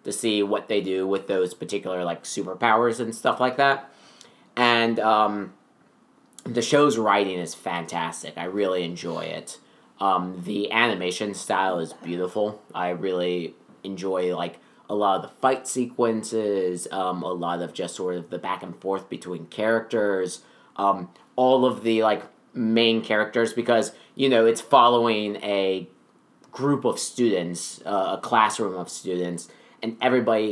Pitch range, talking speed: 90-120 Hz, 150 wpm